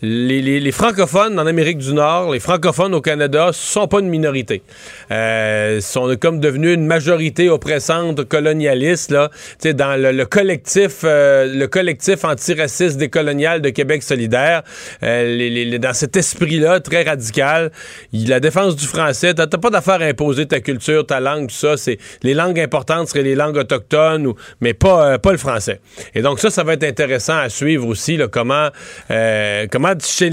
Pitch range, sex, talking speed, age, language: 130-165 Hz, male, 190 wpm, 40-59, French